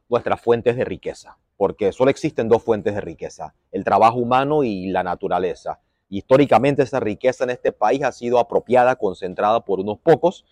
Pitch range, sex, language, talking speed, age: 105-130 Hz, male, Spanish, 170 wpm, 30-49